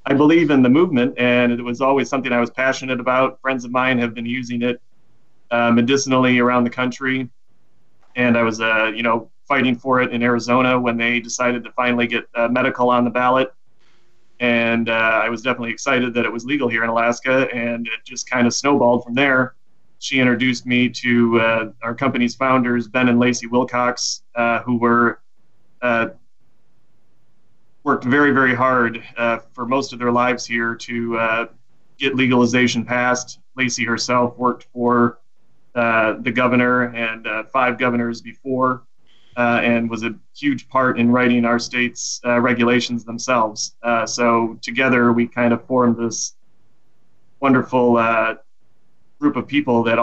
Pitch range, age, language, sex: 115-125 Hz, 30-49, English, male